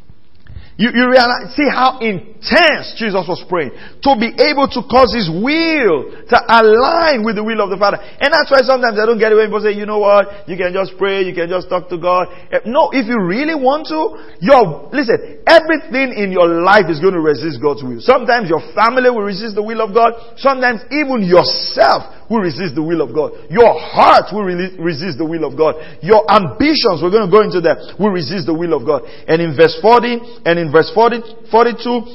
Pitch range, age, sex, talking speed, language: 185-240 Hz, 50-69, male, 215 wpm, English